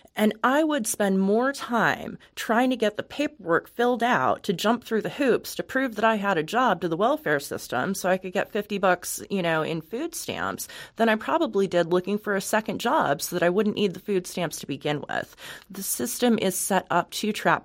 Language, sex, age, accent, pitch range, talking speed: English, female, 30-49, American, 165-220 Hz, 230 wpm